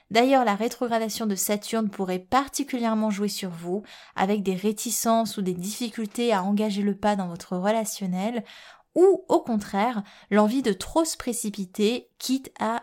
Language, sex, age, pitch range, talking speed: French, female, 20-39, 195-230 Hz, 155 wpm